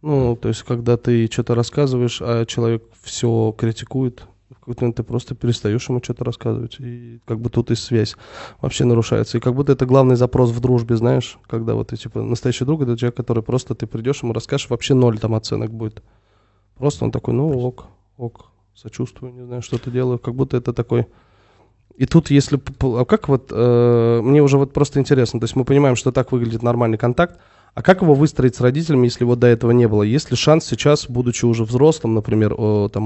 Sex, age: male, 20-39